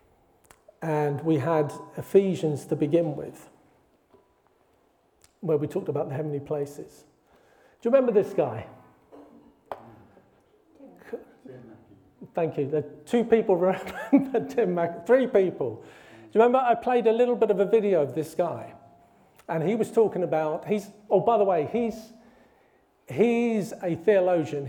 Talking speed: 140 wpm